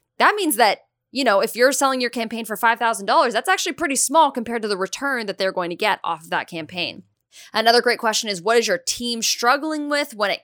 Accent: American